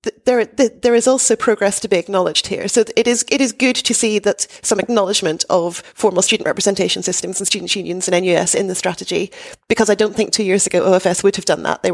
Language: English